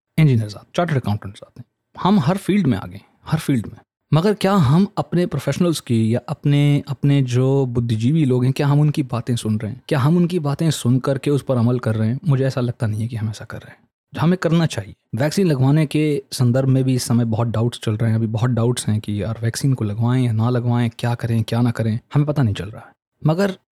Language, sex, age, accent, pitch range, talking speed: Hindi, male, 20-39, native, 115-150 Hz, 245 wpm